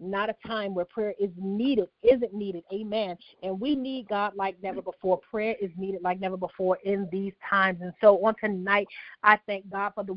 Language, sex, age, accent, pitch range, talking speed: English, female, 40-59, American, 195-220 Hz, 205 wpm